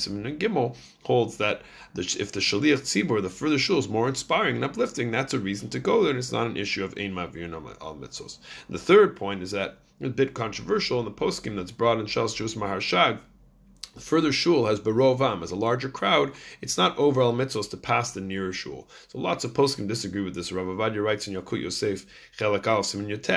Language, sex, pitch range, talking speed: English, male, 95-120 Hz, 210 wpm